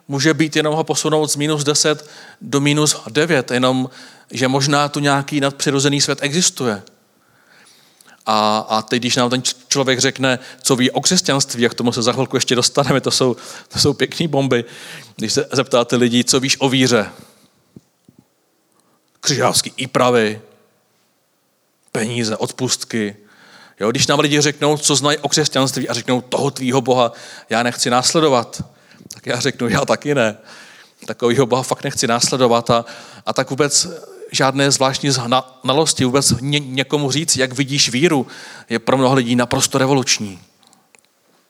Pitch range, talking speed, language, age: 120-140 Hz, 150 wpm, Czech, 40-59